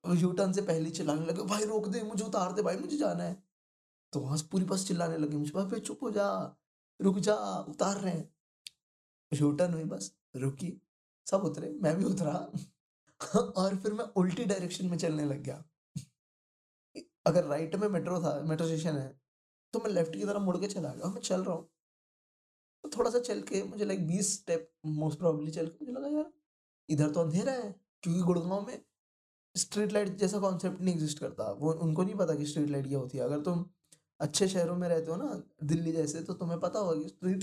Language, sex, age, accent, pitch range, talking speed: Hindi, male, 20-39, native, 150-190 Hz, 195 wpm